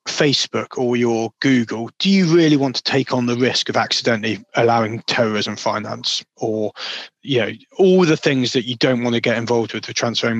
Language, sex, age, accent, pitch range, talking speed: English, male, 30-49, British, 115-135 Hz, 195 wpm